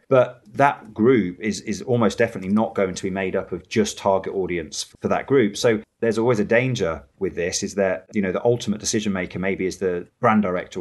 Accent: British